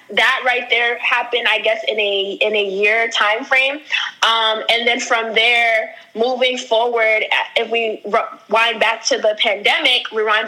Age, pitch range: 10-29, 205-235 Hz